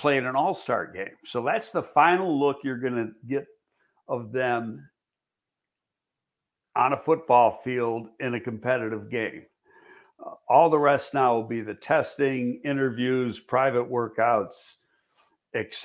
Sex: male